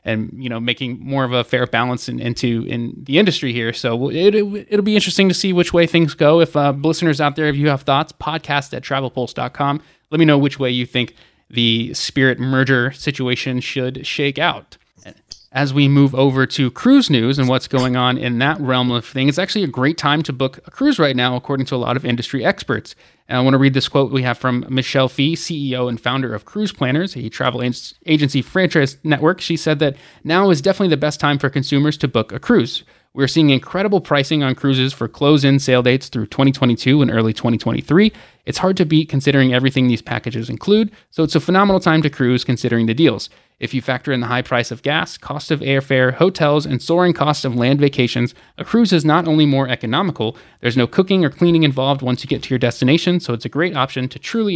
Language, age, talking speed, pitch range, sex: English, 20-39, 220 wpm, 125-155 Hz, male